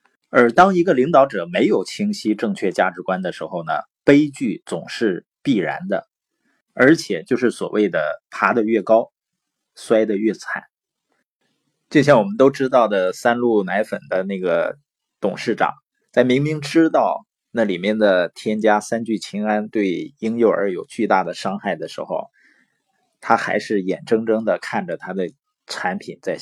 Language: Chinese